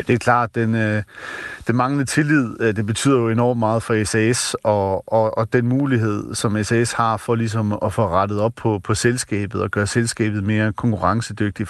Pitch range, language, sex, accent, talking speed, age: 110-130 Hz, Danish, male, native, 185 wpm, 40-59